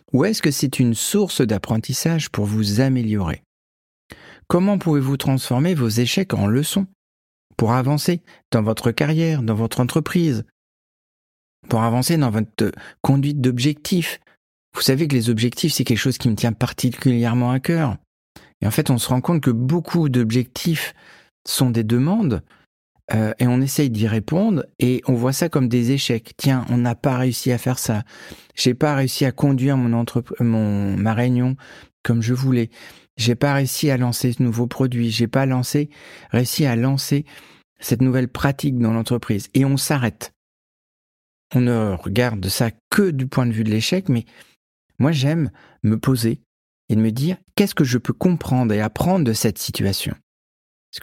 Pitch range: 115-145 Hz